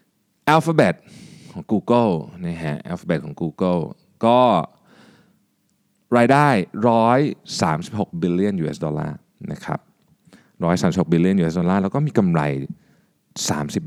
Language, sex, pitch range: Thai, male, 85-120 Hz